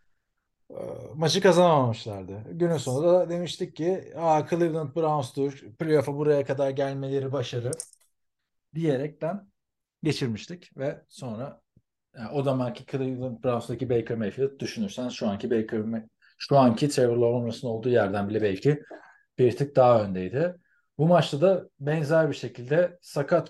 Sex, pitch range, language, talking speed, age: male, 120-160 Hz, Turkish, 120 wpm, 40-59